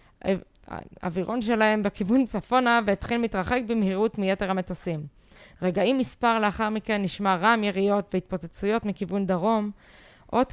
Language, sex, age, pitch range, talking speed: Hebrew, female, 20-39, 180-225 Hz, 115 wpm